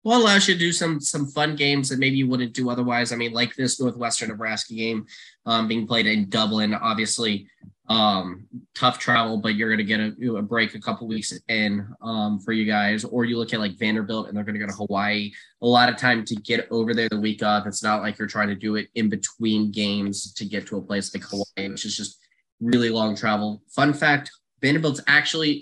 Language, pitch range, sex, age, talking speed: English, 105-130 Hz, male, 10-29, 230 wpm